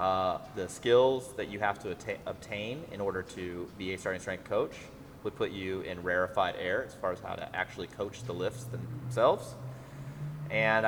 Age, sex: 30-49, male